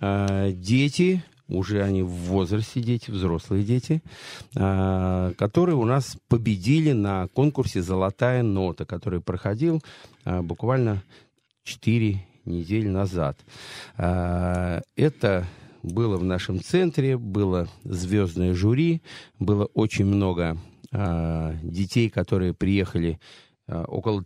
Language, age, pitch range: Russian, 40-59, 95-120 Hz